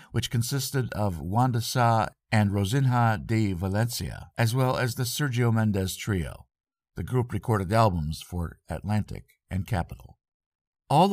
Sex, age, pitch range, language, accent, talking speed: male, 50-69, 100-125 Hz, English, American, 135 wpm